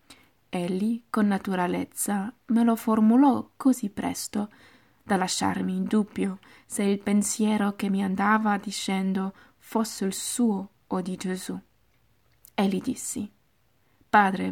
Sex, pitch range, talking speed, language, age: female, 185-215 Hz, 115 wpm, Italian, 20-39